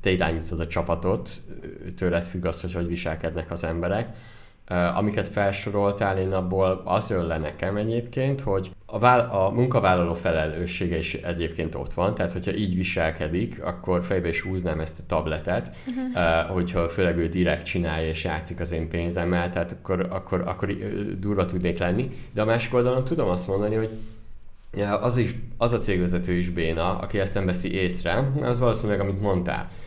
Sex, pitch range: male, 85-100 Hz